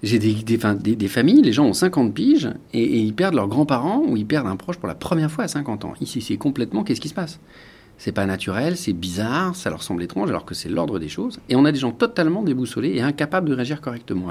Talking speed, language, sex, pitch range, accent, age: 265 wpm, French, male, 100-140 Hz, French, 40-59